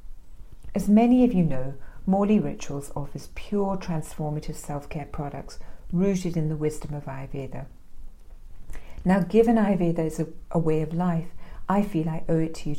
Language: English